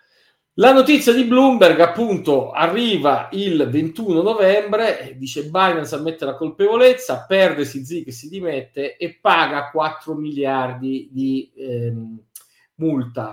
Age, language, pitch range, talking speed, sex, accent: 40-59, Italian, 135-195 Hz, 120 wpm, male, native